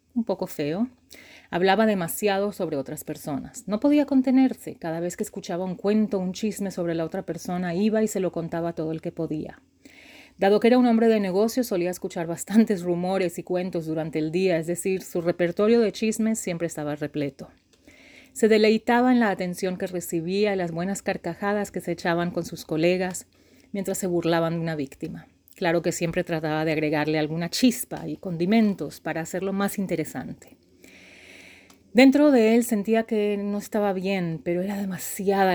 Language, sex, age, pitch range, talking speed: English, female, 30-49, 170-215 Hz, 175 wpm